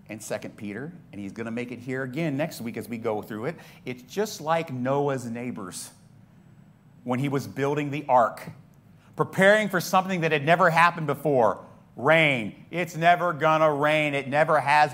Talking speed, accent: 185 wpm, American